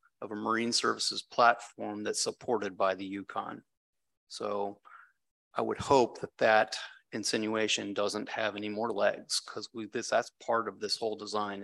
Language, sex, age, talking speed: English, male, 30-49, 150 wpm